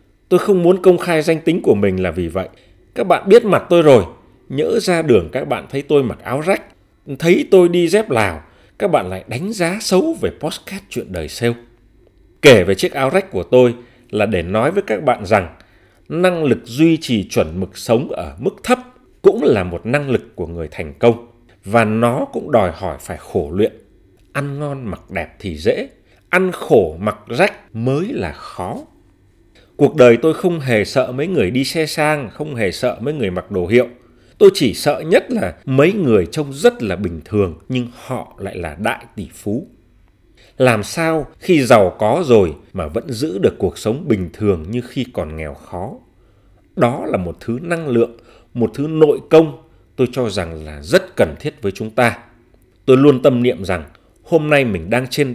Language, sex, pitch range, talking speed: Vietnamese, male, 100-155 Hz, 200 wpm